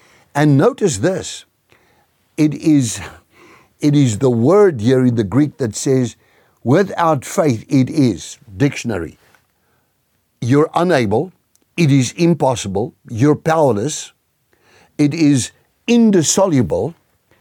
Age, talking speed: 60-79, 105 wpm